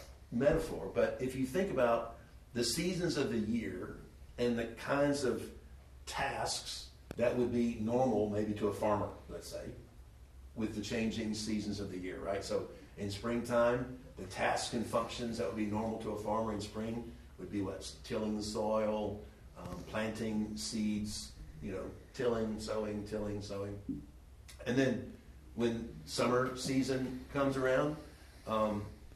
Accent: American